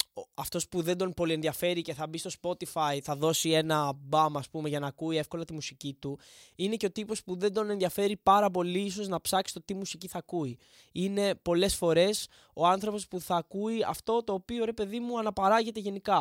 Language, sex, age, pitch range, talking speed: Greek, male, 20-39, 150-195 Hz, 205 wpm